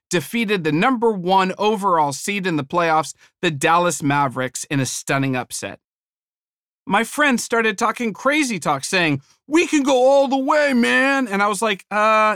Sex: male